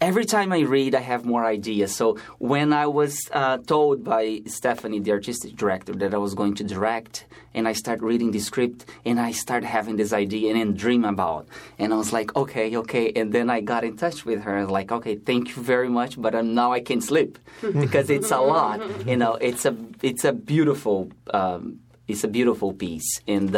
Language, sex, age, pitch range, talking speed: English, male, 20-39, 100-120 Hz, 215 wpm